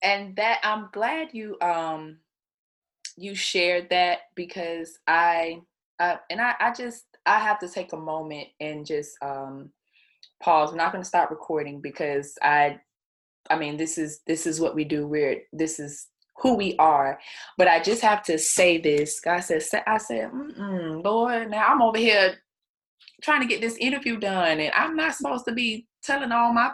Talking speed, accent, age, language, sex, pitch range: 180 wpm, American, 20-39, English, female, 155-215 Hz